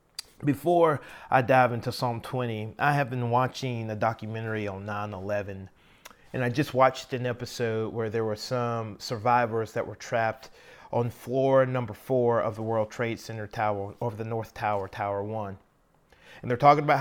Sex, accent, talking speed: male, American, 170 wpm